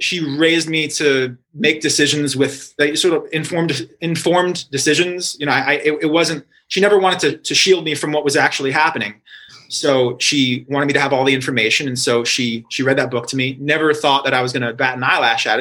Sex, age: male, 30-49